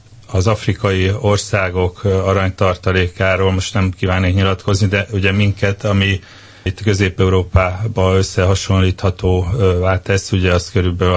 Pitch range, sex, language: 90-105 Hz, male, Hungarian